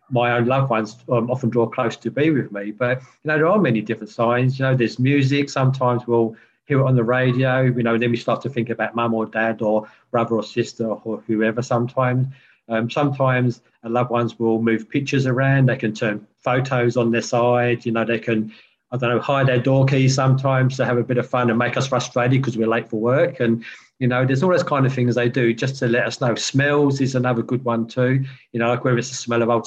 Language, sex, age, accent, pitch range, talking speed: English, male, 40-59, British, 115-130 Hz, 250 wpm